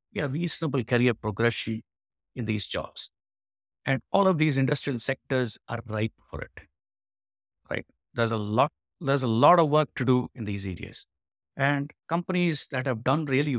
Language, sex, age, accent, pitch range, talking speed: English, male, 50-69, Indian, 110-145 Hz, 170 wpm